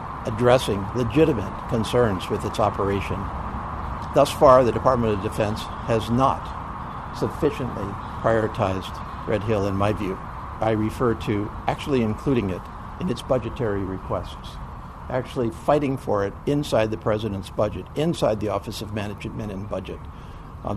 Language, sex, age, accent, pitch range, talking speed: English, male, 60-79, American, 105-125 Hz, 135 wpm